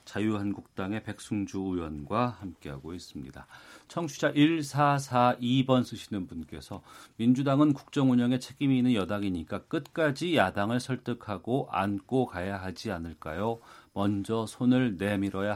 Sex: male